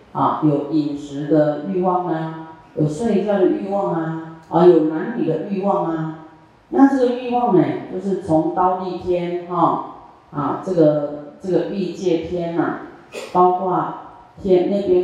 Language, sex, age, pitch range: Chinese, female, 40-59, 155-190 Hz